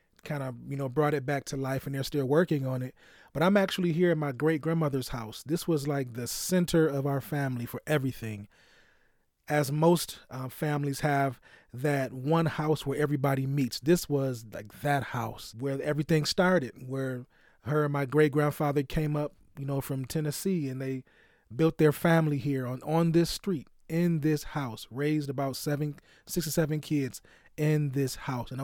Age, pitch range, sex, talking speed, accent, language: 30-49, 135-155 Hz, male, 180 wpm, American, English